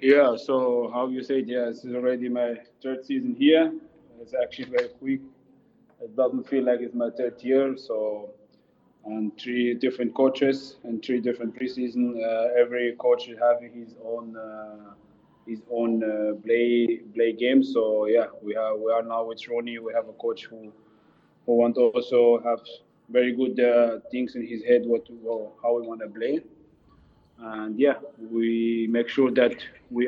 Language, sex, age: English, male, 20-39